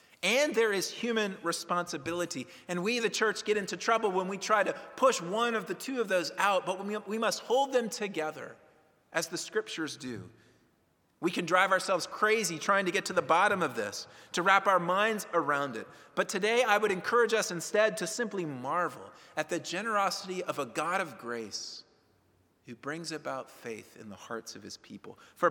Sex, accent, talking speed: male, American, 195 wpm